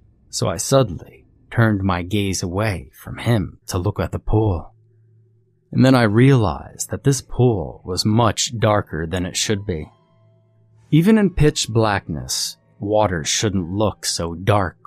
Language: English